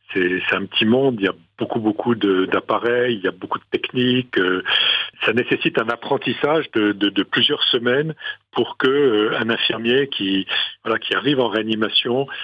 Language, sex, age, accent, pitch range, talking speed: French, male, 50-69, French, 95-130 Hz, 190 wpm